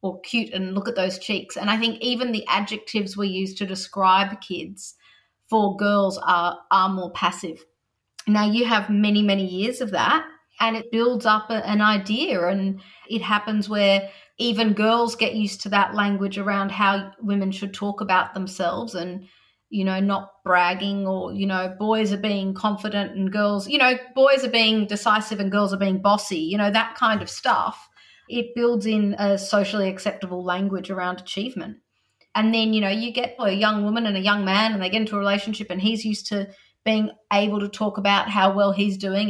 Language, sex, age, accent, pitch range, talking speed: English, female, 30-49, Australian, 195-220 Hz, 195 wpm